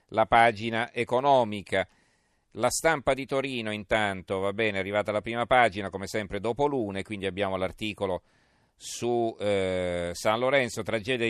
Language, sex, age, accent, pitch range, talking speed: Italian, male, 40-59, native, 100-120 Hz, 145 wpm